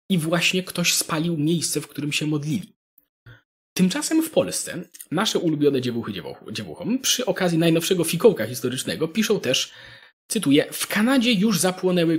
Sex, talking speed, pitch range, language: male, 145 wpm, 150-195 Hz, Polish